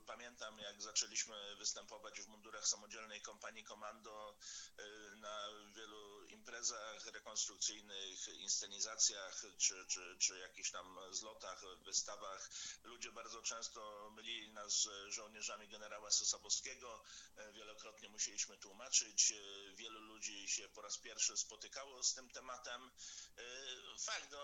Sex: male